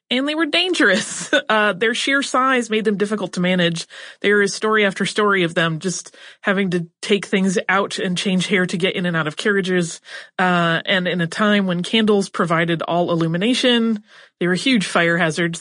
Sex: female